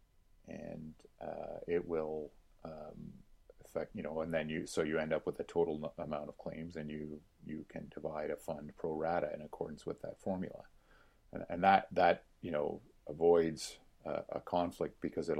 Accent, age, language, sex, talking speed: American, 40-59, English, male, 185 wpm